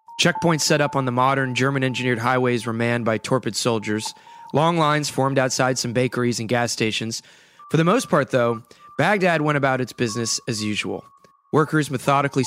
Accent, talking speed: American, 180 wpm